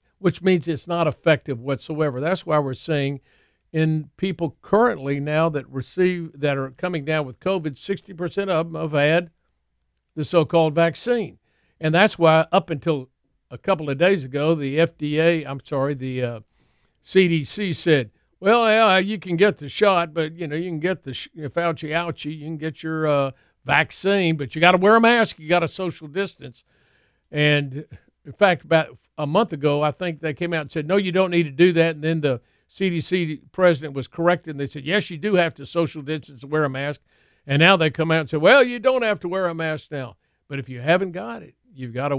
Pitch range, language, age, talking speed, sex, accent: 140-175 Hz, English, 50-69, 210 wpm, male, American